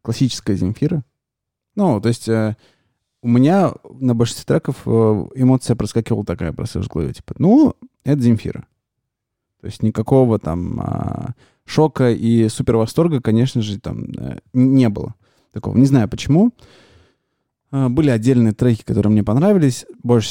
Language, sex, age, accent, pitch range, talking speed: Russian, male, 20-39, native, 105-130 Hz, 135 wpm